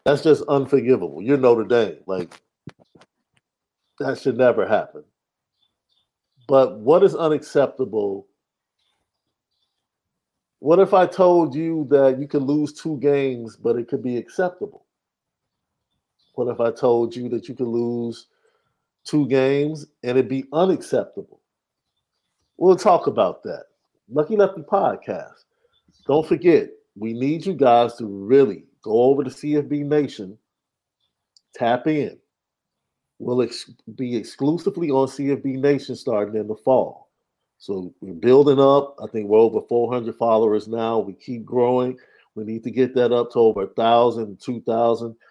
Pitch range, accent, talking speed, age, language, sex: 115-150 Hz, American, 135 wpm, 50-69, English, male